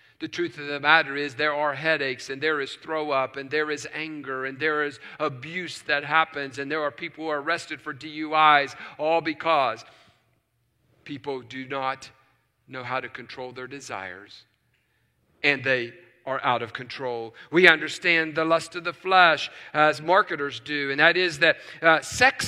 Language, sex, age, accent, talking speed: English, male, 50-69, American, 175 wpm